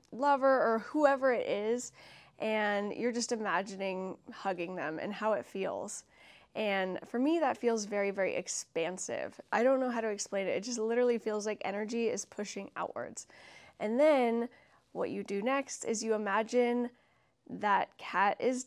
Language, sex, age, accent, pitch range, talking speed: English, female, 10-29, American, 200-250 Hz, 165 wpm